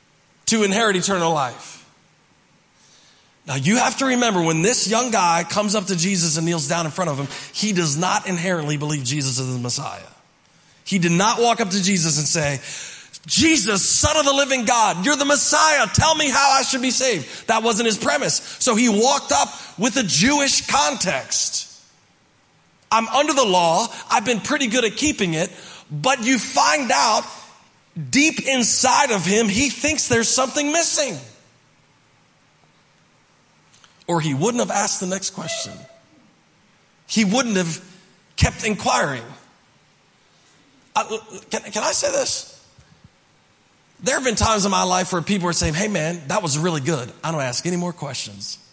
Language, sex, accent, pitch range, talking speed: English, male, American, 170-245 Hz, 165 wpm